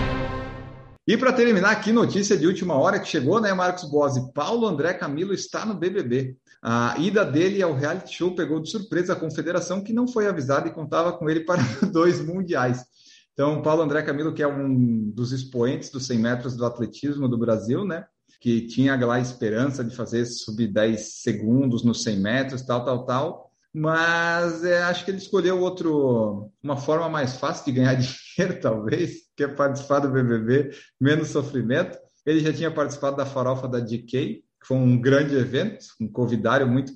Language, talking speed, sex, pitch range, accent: Portuguese, 180 wpm, male, 125-165 Hz, Brazilian